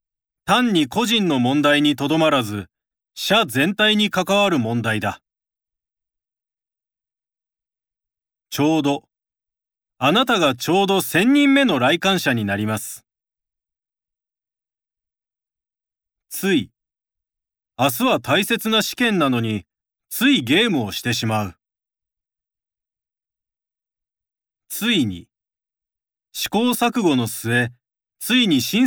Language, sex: Japanese, male